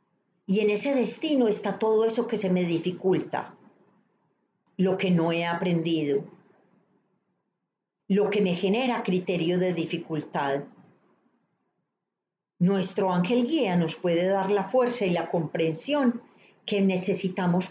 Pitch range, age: 160-200 Hz, 40-59